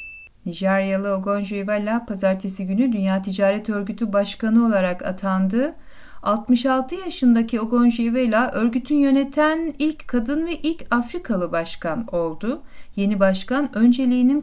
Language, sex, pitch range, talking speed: Turkish, female, 200-260 Hz, 110 wpm